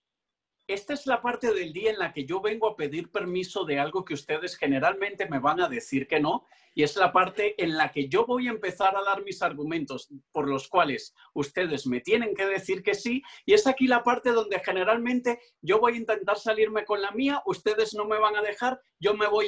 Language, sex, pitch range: Spanish, male, 175-245 Hz